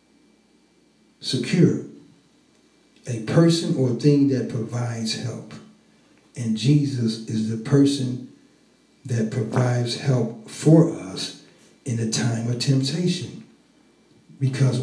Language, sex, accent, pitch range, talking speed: English, male, American, 115-150 Hz, 95 wpm